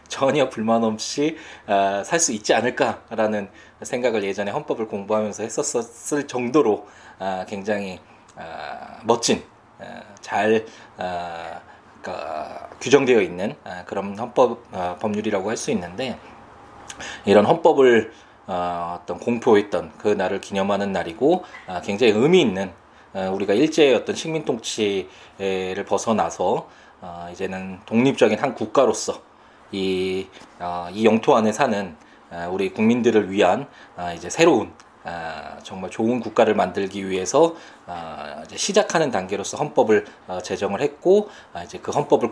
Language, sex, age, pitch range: Korean, male, 20-39, 90-115 Hz